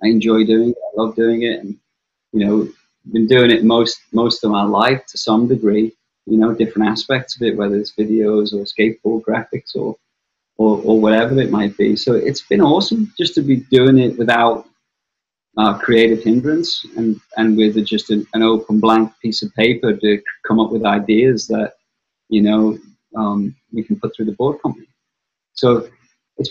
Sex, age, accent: male, 30-49, British